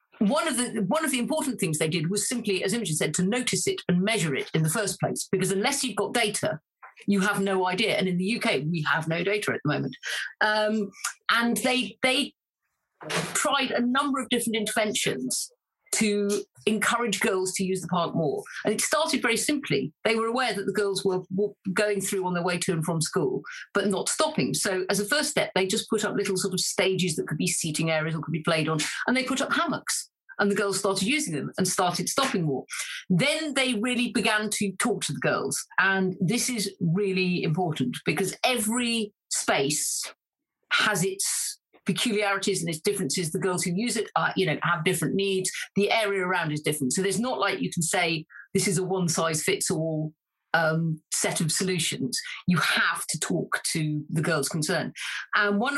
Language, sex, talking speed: English, female, 205 wpm